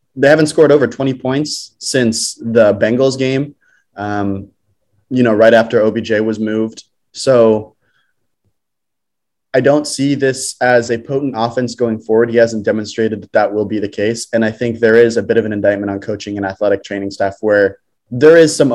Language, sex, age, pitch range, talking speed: English, male, 20-39, 105-130 Hz, 185 wpm